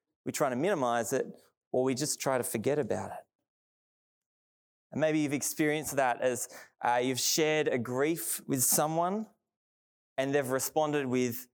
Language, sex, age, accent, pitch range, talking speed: English, male, 20-39, Australian, 110-145 Hz, 155 wpm